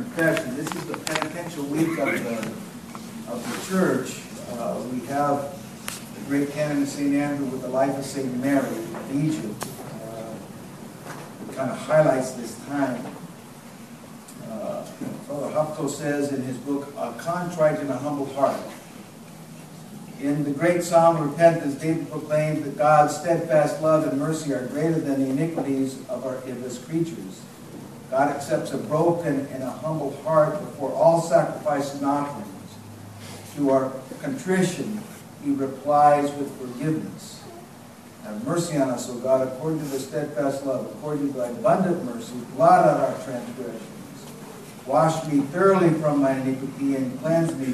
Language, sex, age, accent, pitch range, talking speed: English, male, 50-69, American, 135-155 Hz, 150 wpm